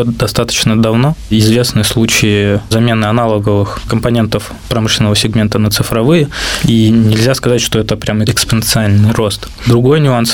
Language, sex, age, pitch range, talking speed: Russian, male, 20-39, 110-120 Hz, 120 wpm